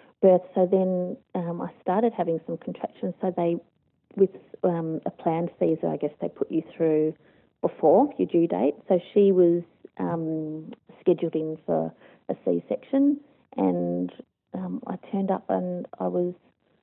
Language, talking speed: English, 150 wpm